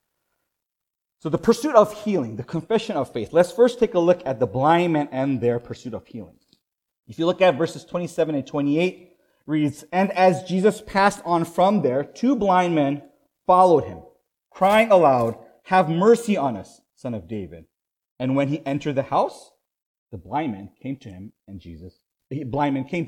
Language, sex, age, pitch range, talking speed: English, male, 40-59, 120-185 Hz, 185 wpm